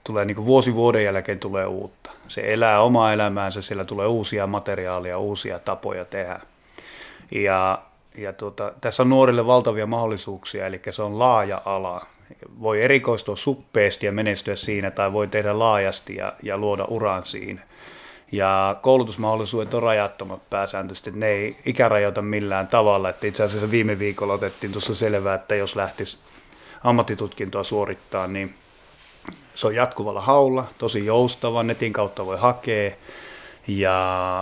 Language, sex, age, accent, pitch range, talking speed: Finnish, male, 30-49, native, 100-120 Hz, 140 wpm